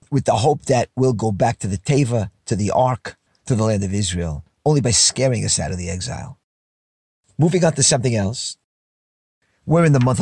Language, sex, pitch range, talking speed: English, male, 105-145 Hz, 205 wpm